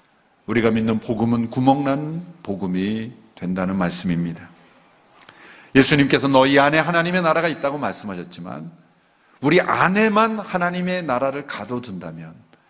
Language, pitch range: Korean, 105-160 Hz